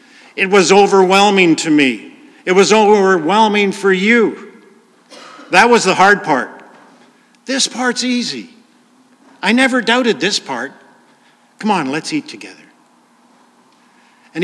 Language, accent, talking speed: English, American, 120 wpm